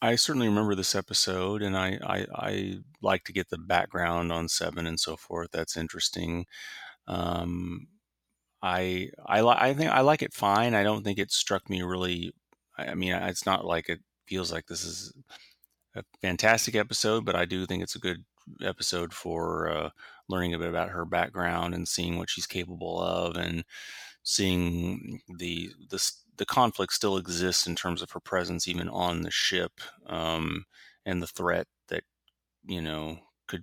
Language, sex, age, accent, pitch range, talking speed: English, male, 30-49, American, 85-95 Hz, 175 wpm